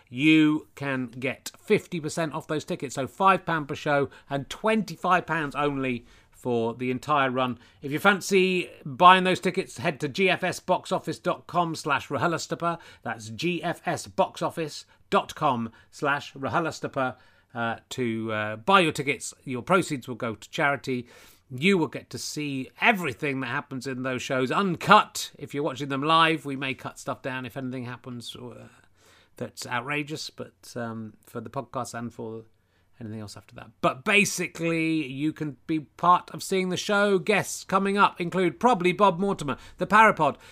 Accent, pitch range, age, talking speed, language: British, 120-170 Hz, 30-49, 145 wpm, English